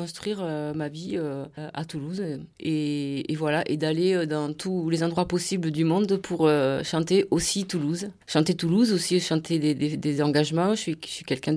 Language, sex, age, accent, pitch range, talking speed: French, female, 30-49, French, 155-185 Hz, 195 wpm